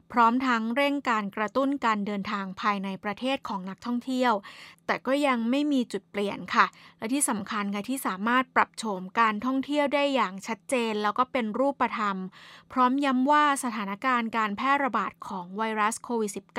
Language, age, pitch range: Thai, 20-39, 210-260 Hz